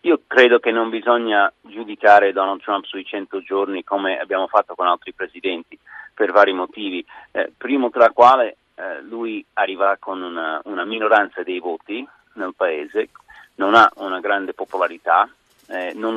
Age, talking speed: 40-59, 155 wpm